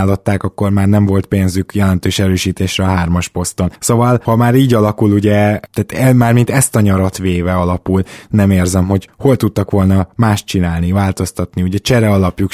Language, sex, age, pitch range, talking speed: Hungarian, male, 20-39, 95-115 Hz, 180 wpm